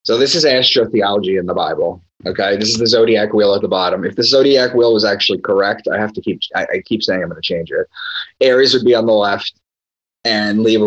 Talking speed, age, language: 235 wpm, 30-49, English